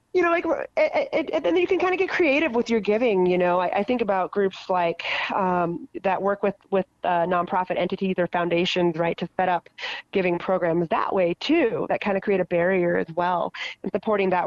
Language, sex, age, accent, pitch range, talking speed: English, female, 30-49, American, 170-205 Hz, 210 wpm